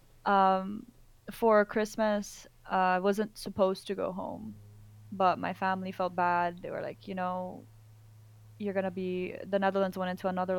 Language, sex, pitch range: English, female, 175-200 Hz